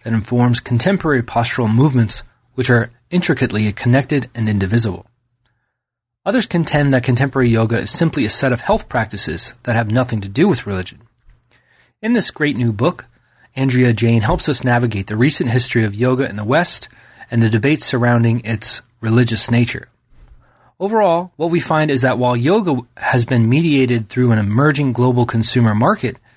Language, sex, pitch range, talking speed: English, male, 120-150 Hz, 165 wpm